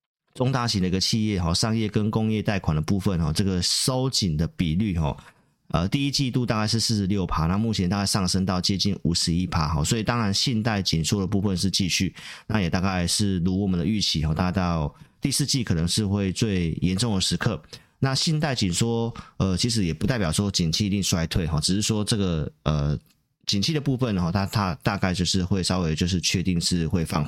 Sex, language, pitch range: male, Chinese, 90-110 Hz